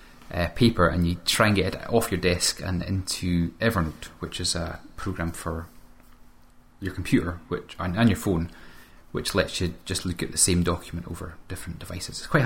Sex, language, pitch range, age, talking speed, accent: male, English, 85-100 Hz, 30-49, 195 wpm, British